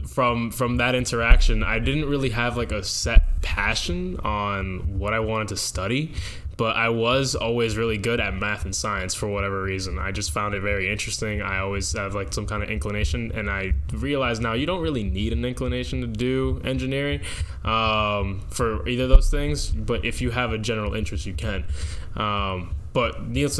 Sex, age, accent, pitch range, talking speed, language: male, 10-29, American, 90-110 Hz, 195 wpm, English